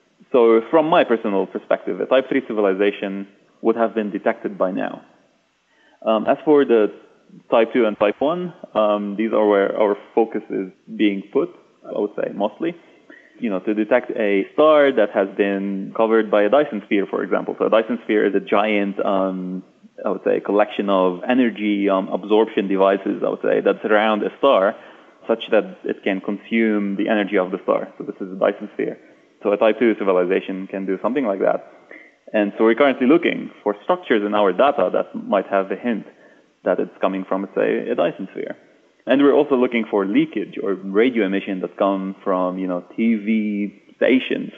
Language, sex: English, male